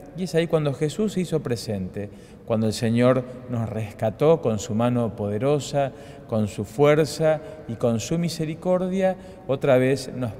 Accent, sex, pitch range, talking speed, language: Argentinian, male, 115-150 Hz, 155 wpm, Spanish